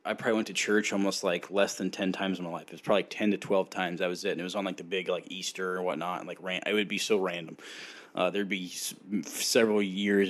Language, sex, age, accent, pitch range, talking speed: English, male, 20-39, American, 90-100 Hz, 295 wpm